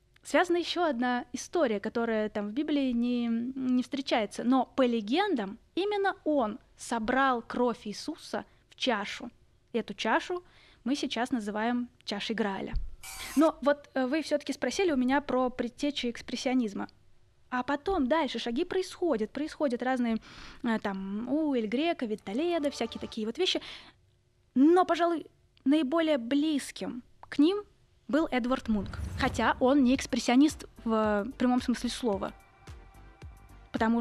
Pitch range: 225-290 Hz